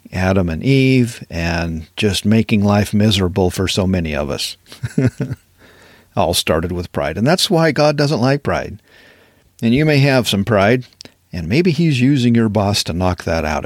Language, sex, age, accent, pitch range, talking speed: English, male, 50-69, American, 90-125 Hz, 175 wpm